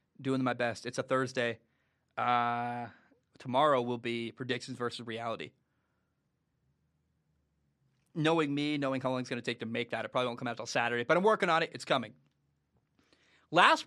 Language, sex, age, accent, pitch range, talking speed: English, male, 20-39, American, 120-150 Hz, 175 wpm